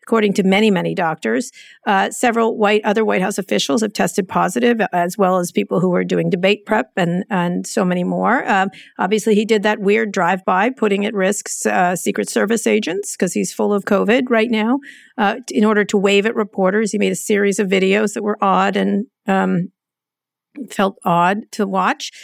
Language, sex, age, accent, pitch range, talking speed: English, female, 50-69, American, 185-225 Hz, 195 wpm